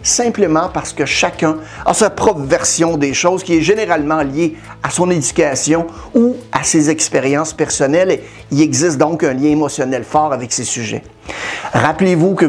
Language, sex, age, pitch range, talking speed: French, male, 50-69, 150-195 Hz, 165 wpm